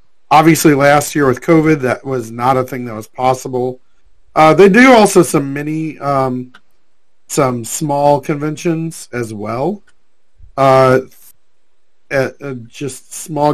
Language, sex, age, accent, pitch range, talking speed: English, male, 40-59, American, 115-145 Hz, 130 wpm